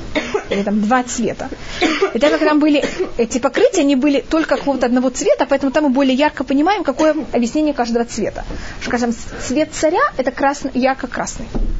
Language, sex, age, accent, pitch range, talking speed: Russian, female, 20-39, native, 235-285 Hz, 180 wpm